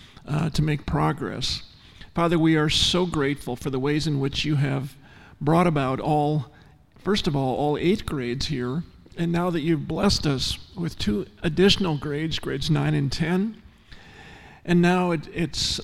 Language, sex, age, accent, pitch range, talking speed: English, male, 50-69, American, 140-175 Hz, 165 wpm